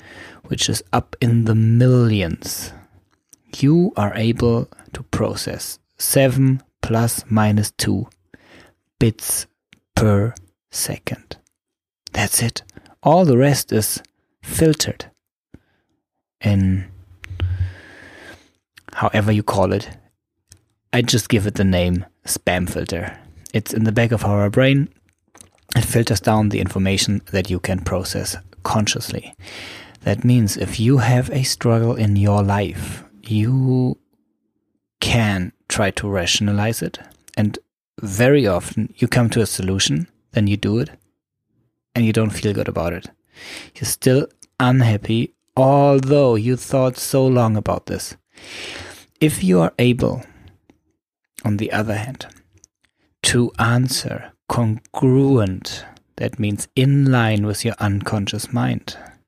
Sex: male